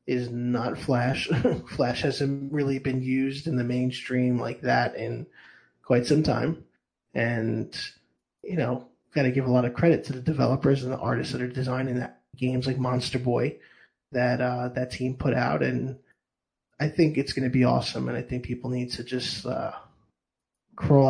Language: English